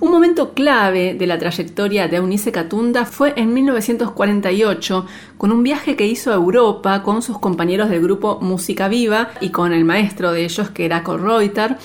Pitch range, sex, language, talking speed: 185-230 Hz, female, Spanish, 180 wpm